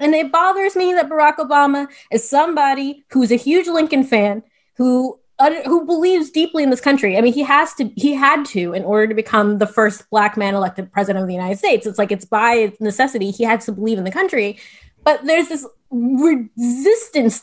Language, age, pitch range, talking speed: English, 20-39, 225-320 Hz, 205 wpm